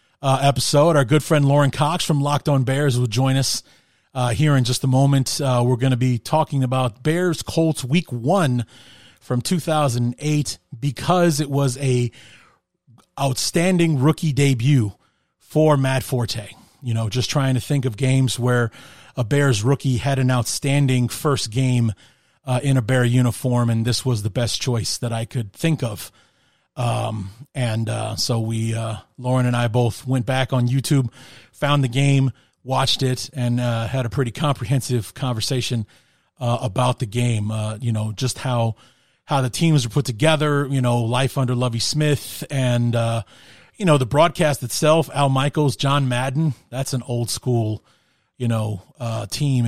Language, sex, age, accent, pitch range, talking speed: English, male, 30-49, American, 120-140 Hz, 170 wpm